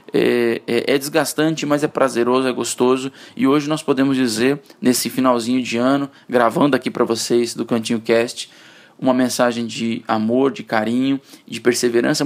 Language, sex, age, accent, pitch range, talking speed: Portuguese, male, 20-39, Brazilian, 125-150 Hz, 160 wpm